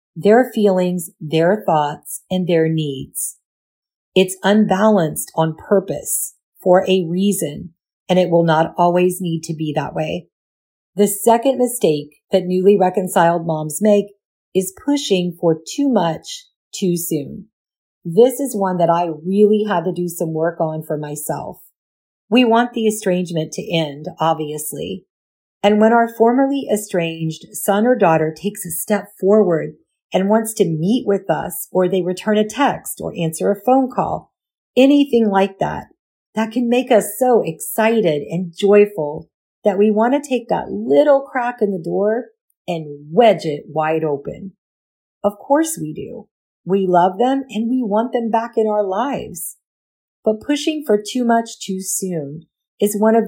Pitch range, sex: 165-220 Hz, female